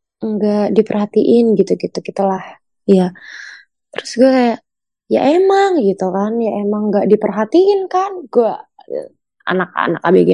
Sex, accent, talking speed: female, native, 120 wpm